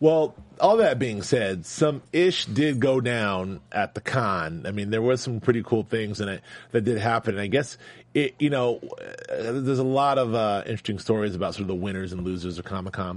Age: 30-49